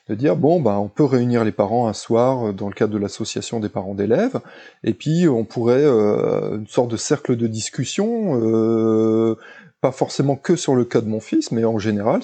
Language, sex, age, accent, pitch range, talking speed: French, male, 20-39, French, 110-155 Hz, 210 wpm